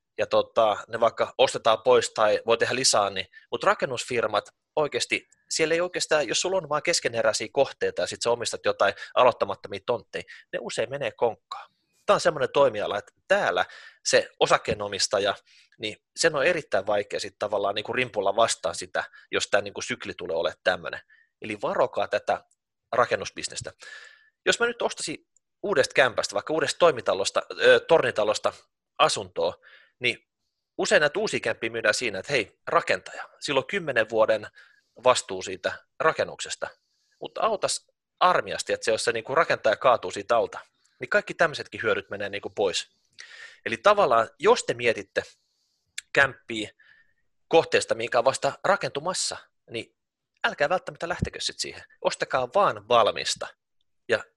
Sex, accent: male, native